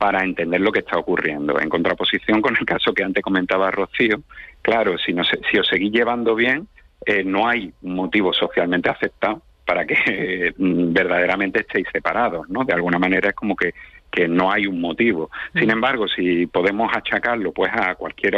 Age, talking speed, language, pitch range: 50-69, 185 wpm, Spanish, 90-105 Hz